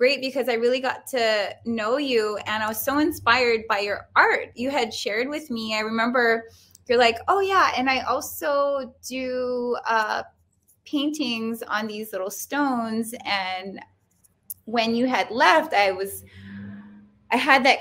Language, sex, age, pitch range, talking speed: English, female, 20-39, 200-255 Hz, 160 wpm